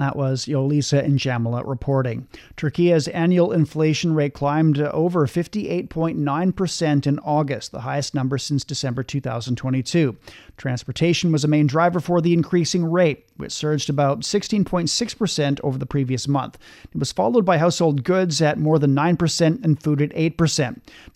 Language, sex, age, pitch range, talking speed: English, male, 40-59, 140-165 Hz, 150 wpm